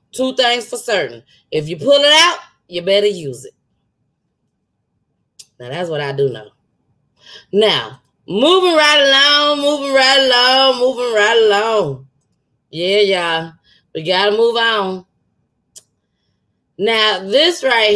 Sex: female